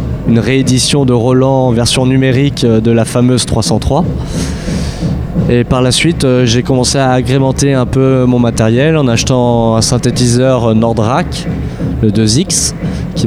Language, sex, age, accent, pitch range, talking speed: French, male, 20-39, French, 115-135 Hz, 140 wpm